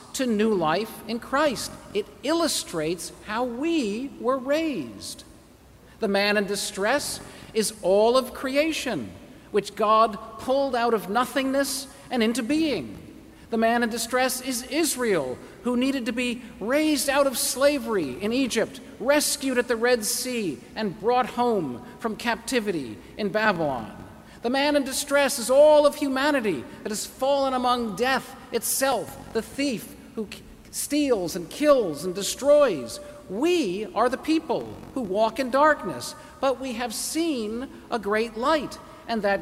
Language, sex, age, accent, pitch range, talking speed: English, male, 40-59, American, 215-285 Hz, 145 wpm